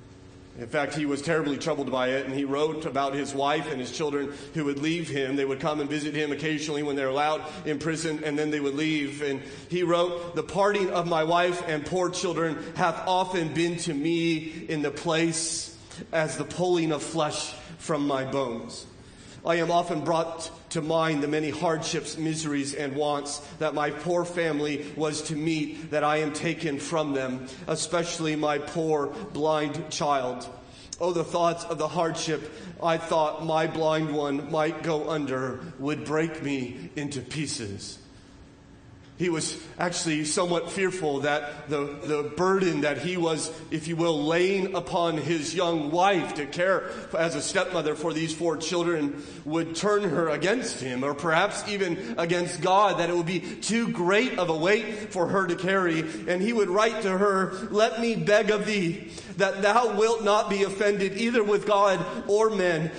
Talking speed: 180 wpm